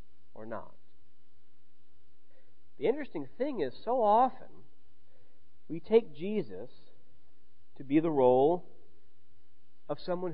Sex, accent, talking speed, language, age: male, American, 100 wpm, English, 40-59